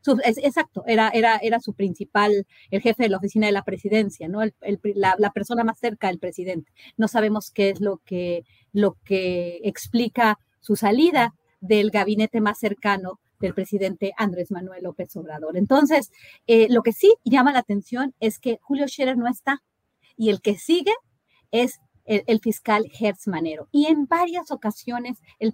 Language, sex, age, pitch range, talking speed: Spanish, female, 40-59, 205-240 Hz, 160 wpm